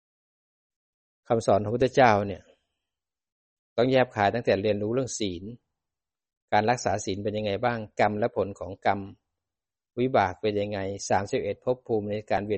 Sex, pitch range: male, 100-120 Hz